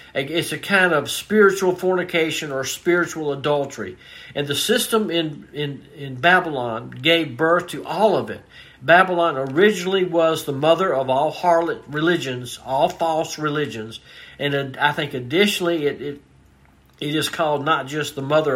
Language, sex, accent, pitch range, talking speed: English, male, American, 135-175 Hz, 150 wpm